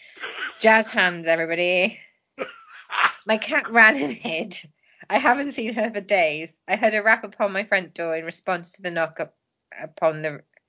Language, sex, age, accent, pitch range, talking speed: English, female, 20-39, British, 165-205 Hz, 170 wpm